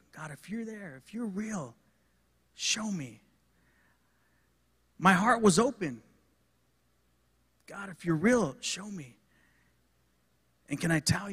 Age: 40-59